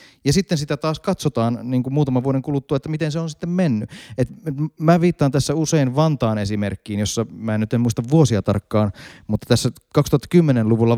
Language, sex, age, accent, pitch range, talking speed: Finnish, male, 30-49, native, 120-175 Hz, 180 wpm